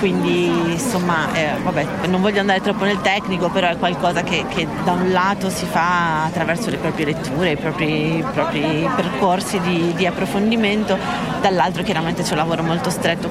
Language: Italian